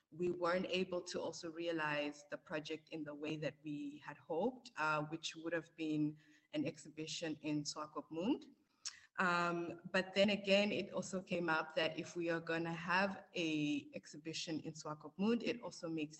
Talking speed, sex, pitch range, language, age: 170 wpm, female, 155-185 Hz, German, 20-39